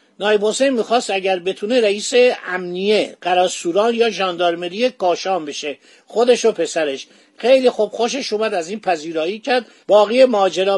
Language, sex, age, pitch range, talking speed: Persian, male, 50-69, 180-235 Hz, 135 wpm